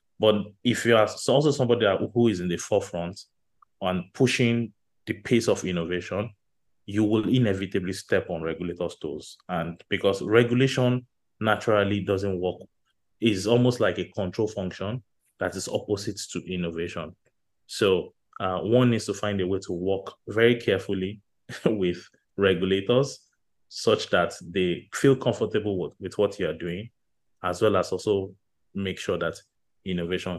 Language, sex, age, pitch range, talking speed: English, male, 30-49, 90-110 Hz, 145 wpm